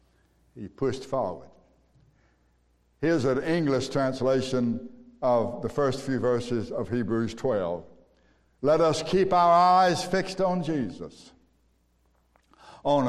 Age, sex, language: 60-79, male, English